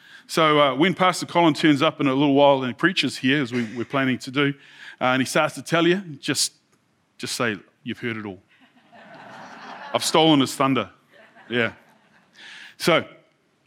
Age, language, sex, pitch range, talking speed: 30-49, English, male, 120-155 Hz, 180 wpm